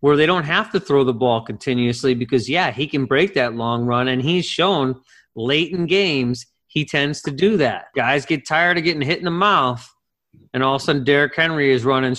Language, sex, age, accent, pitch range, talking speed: English, male, 30-49, American, 130-175 Hz, 225 wpm